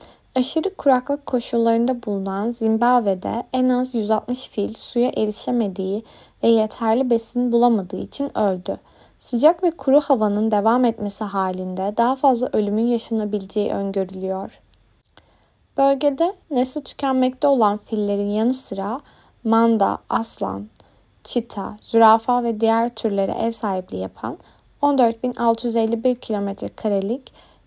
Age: 20-39